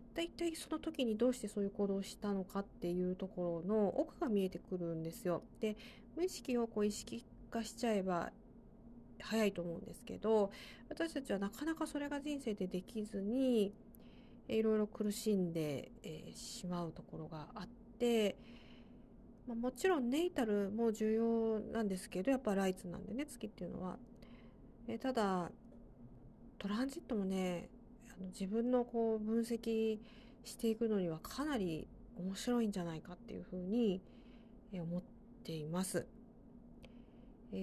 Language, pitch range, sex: Japanese, 190-235 Hz, female